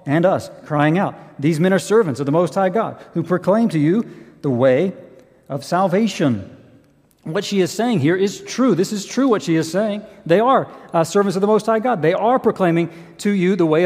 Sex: male